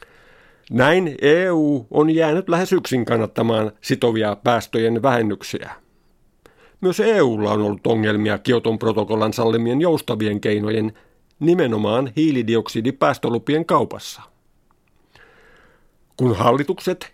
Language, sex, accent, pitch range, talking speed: Finnish, male, native, 115-155 Hz, 90 wpm